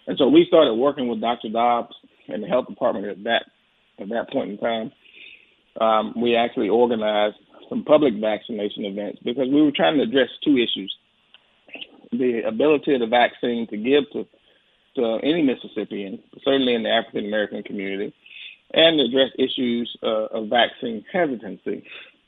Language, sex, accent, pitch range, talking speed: English, male, American, 110-135 Hz, 160 wpm